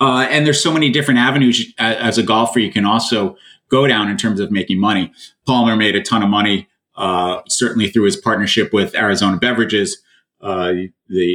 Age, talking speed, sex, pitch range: 30-49, 190 wpm, male, 100-120 Hz